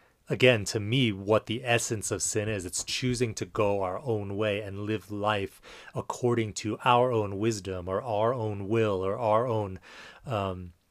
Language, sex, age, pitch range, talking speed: English, male, 30-49, 95-115 Hz, 175 wpm